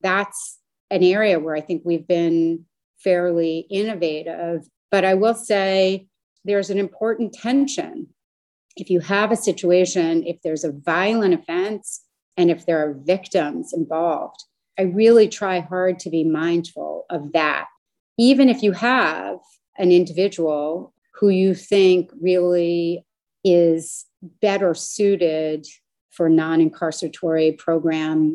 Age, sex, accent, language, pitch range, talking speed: 30-49, female, American, English, 160-205 Hz, 125 wpm